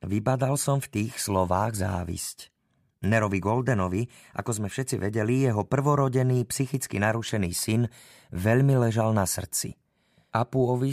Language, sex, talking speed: Slovak, male, 120 wpm